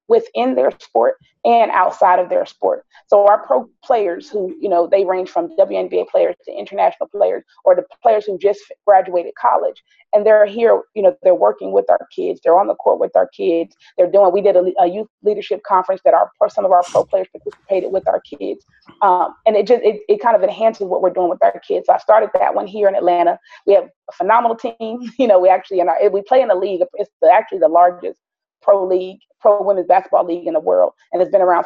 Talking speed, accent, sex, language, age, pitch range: 235 wpm, American, female, English, 30-49, 185-275 Hz